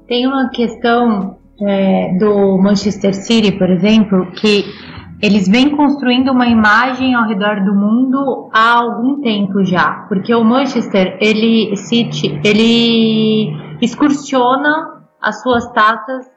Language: Portuguese